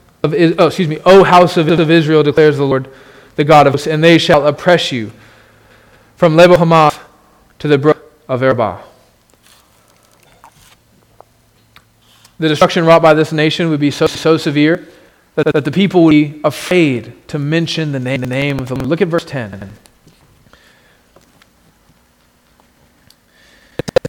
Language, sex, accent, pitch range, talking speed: English, male, American, 150-195 Hz, 150 wpm